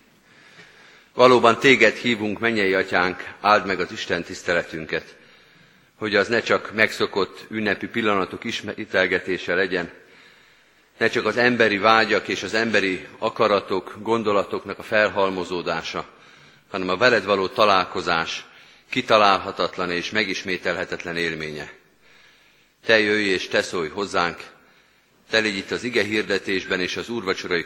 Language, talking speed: Hungarian, 115 wpm